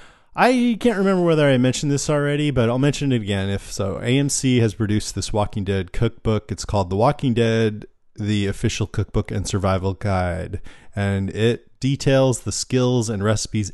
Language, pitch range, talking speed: English, 95-115 Hz, 175 wpm